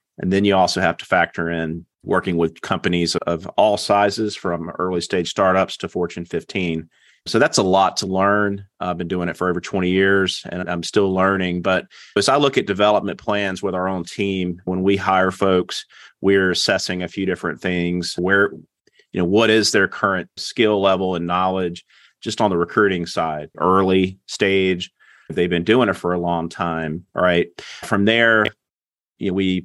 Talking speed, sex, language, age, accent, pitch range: 180 wpm, male, English, 30-49, American, 85-95 Hz